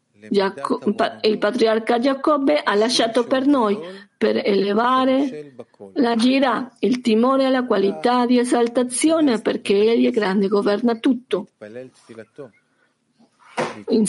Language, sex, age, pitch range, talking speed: Italian, female, 50-69, 200-255 Hz, 105 wpm